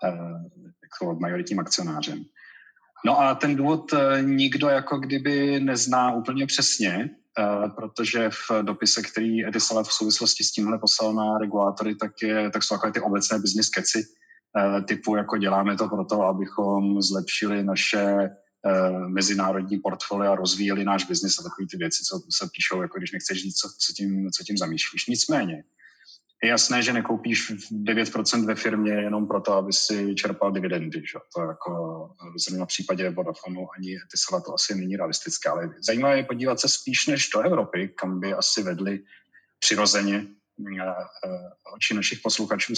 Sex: male